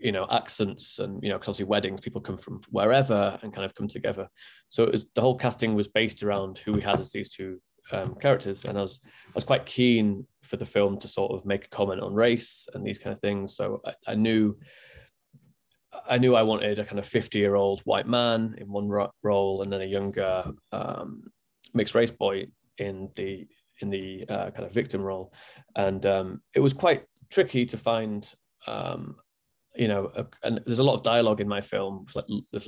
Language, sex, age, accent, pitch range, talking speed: English, male, 20-39, British, 100-110 Hz, 215 wpm